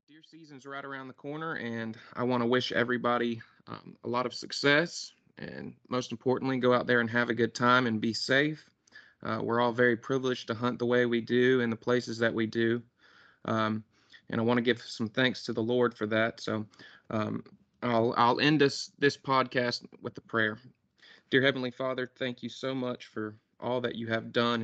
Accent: American